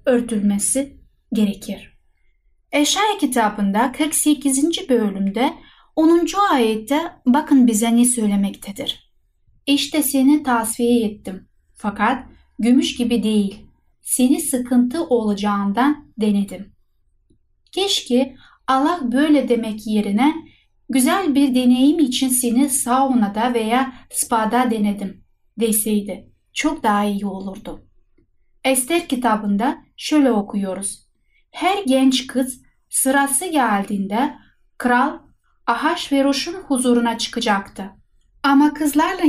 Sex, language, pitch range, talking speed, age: female, Turkish, 215-285 Hz, 90 wpm, 10-29